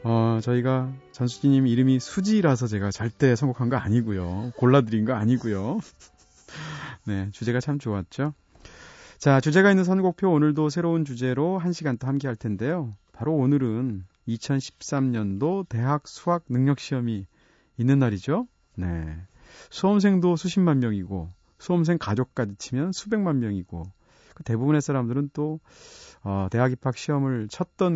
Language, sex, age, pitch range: Korean, male, 30-49, 110-150 Hz